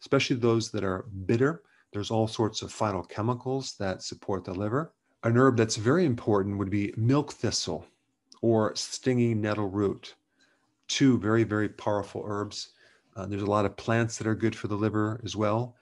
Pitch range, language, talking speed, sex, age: 100-125 Hz, English, 180 wpm, male, 40-59